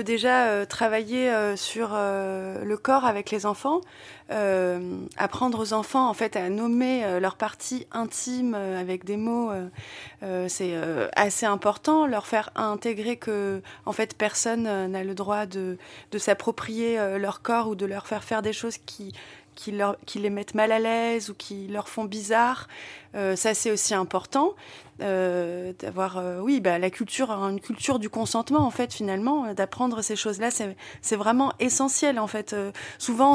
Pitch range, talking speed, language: 200-245 Hz, 185 wpm, French